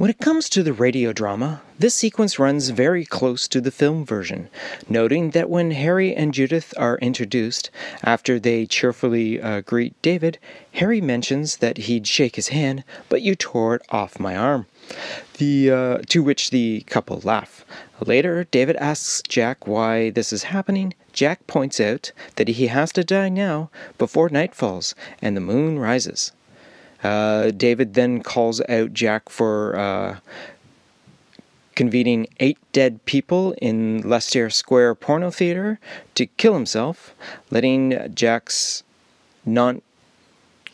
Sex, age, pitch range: male, 30-49, 115-160 Hz